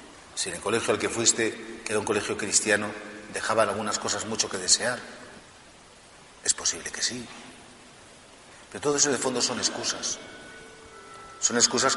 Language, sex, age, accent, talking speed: Spanish, male, 40-59, Spanish, 155 wpm